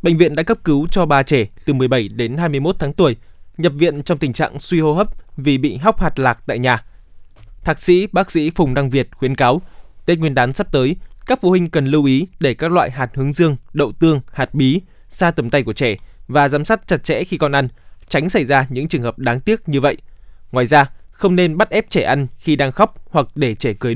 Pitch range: 125-170 Hz